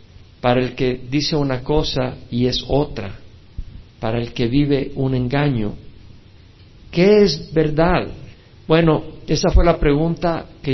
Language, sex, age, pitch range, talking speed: Spanish, male, 50-69, 110-150 Hz, 135 wpm